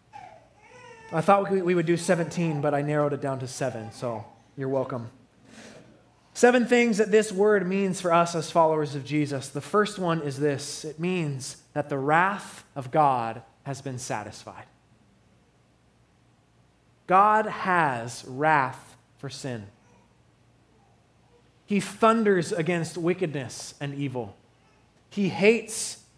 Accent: American